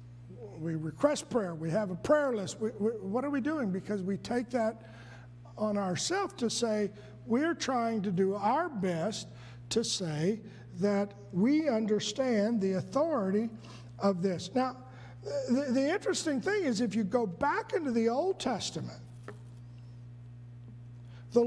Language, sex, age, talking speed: English, male, 50-69, 140 wpm